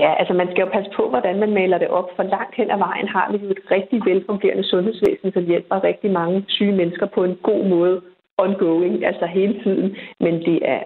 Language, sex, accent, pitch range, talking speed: Danish, female, native, 180-205 Hz, 225 wpm